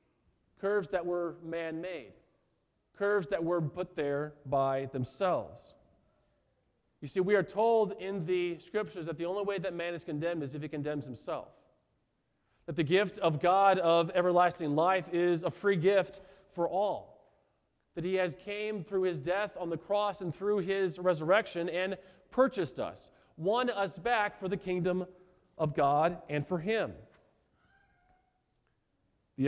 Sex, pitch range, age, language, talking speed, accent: male, 150-190 Hz, 40-59, English, 155 wpm, American